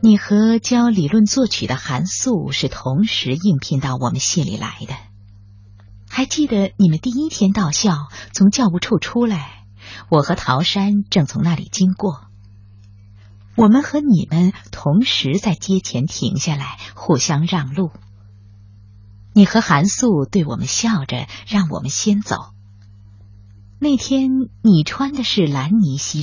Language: Chinese